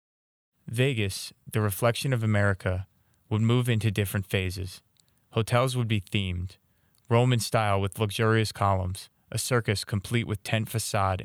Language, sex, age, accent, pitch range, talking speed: English, male, 20-39, American, 95-115 Hz, 135 wpm